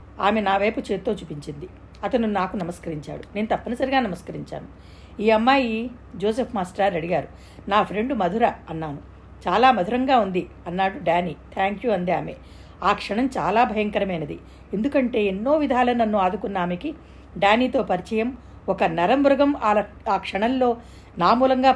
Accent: native